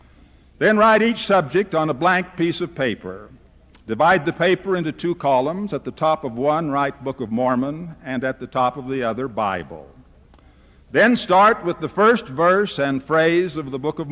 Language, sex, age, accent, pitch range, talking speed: English, male, 60-79, American, 130-170 Hz, 190 wpm